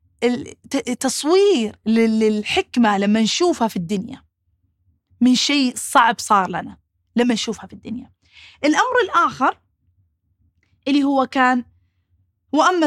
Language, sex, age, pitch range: Arabic, female, 30-49, 220-305 Hz